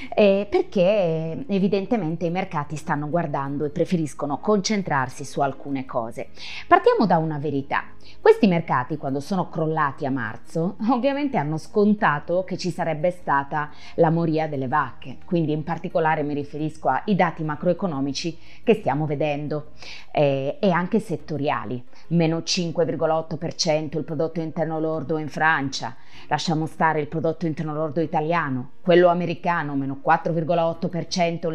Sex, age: female, 20-39